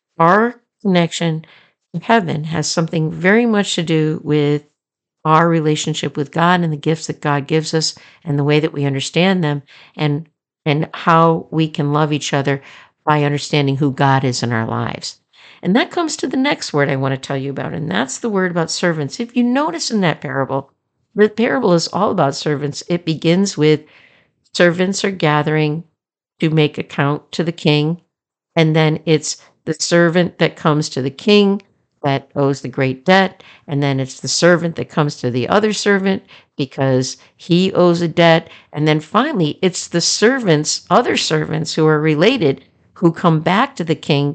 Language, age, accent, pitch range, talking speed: English, 60-79, American, 145-175 Hz, 185 wpm